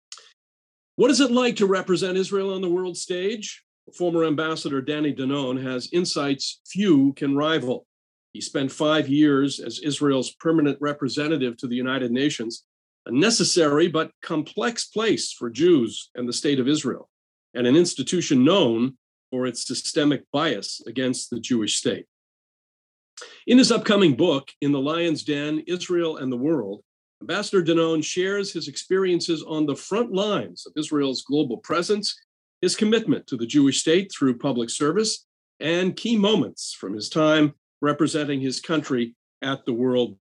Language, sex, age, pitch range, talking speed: English, male, 40-59, 130-175 Hz, 150 wpm